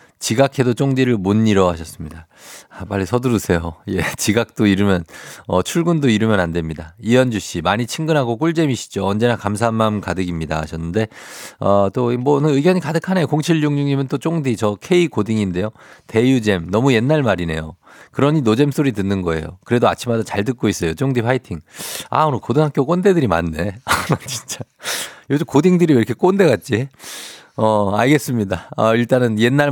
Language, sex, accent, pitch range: Korean, male, native, 100-140 Hz